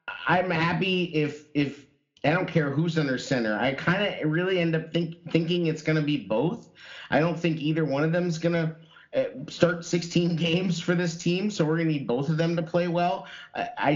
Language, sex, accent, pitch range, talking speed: English, male, American, 125-160 Hz, 210 wpm